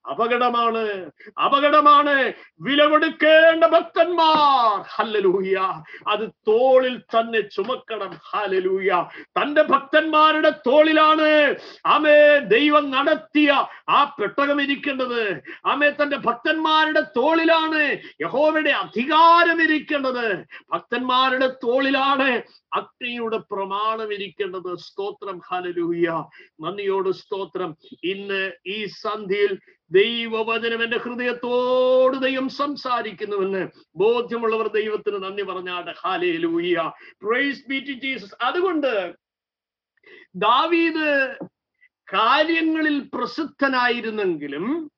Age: 50-69